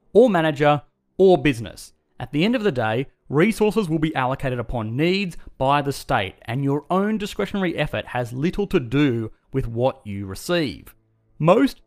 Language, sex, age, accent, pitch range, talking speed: English, male, 30-49, Australian, 120-170 Hz, 165 wpm